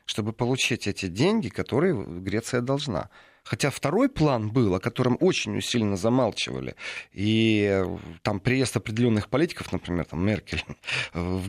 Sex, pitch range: male, 100-135 Hz